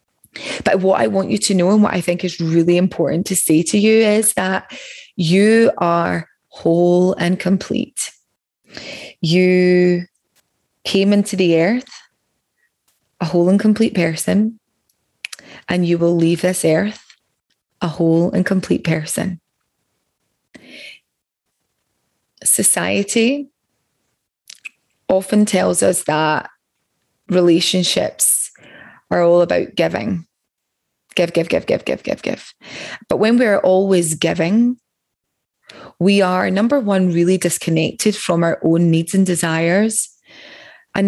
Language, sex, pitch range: English, female, 170-205 Hz